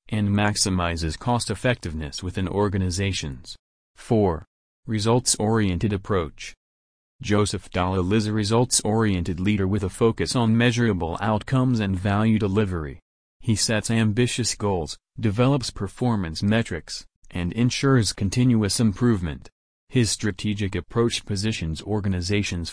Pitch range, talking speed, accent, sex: 90-110 Hz, 105 wpm, American, male